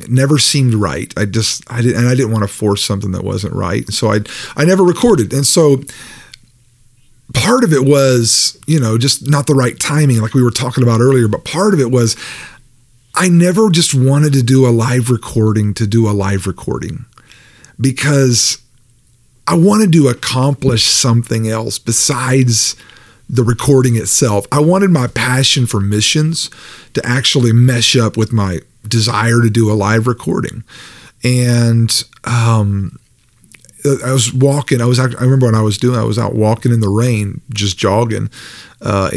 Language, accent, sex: English, American, male